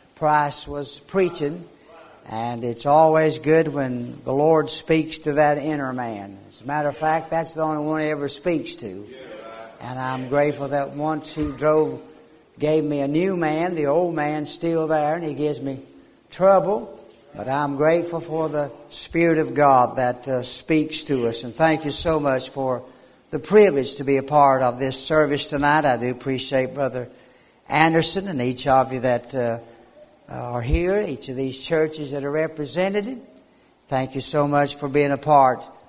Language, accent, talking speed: English, American, 180 wpm